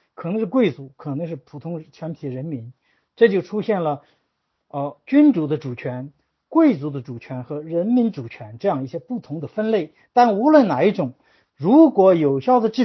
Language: Chinese